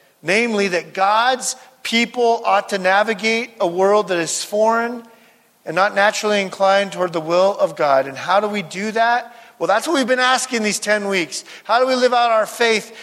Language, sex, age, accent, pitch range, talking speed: English, male, 40-59, American, 185-230 Hz, 200 wpm